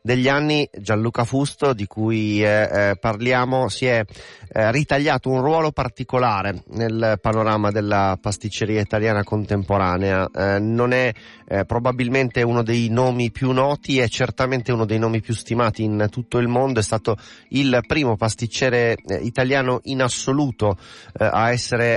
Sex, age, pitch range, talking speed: male, 30-49, 105-125 Hz, 150 wpm